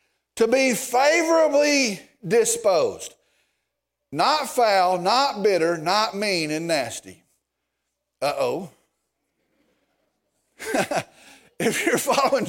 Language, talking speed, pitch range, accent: English, 75 wpm, 230-320 Hz, American